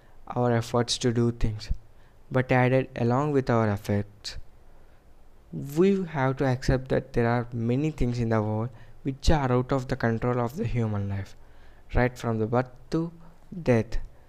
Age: 20-39